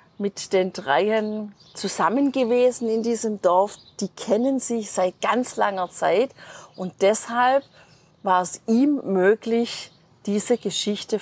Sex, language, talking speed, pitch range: female, German, 125 wpm, 170-230 Hz